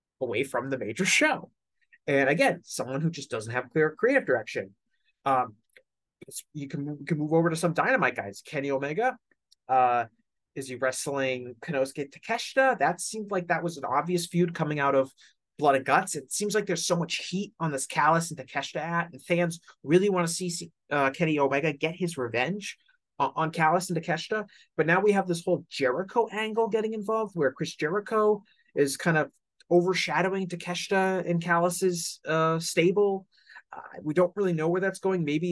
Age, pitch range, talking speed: 30-49, 135-185 Hz, 185 wpm